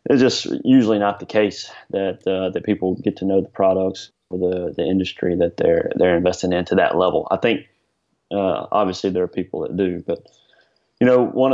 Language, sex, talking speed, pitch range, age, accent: English, male, 210 wpm, 95-105 Hz, 30-49, American